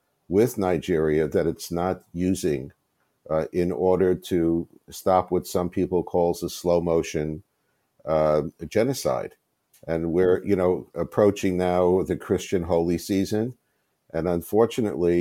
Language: English